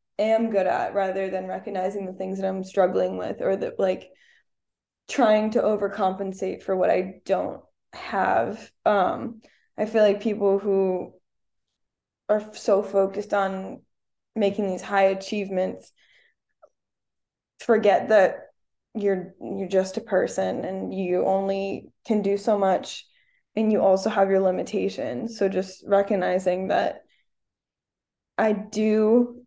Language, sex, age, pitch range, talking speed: English, female, 10-29, 190-215 Hz, 130 wpm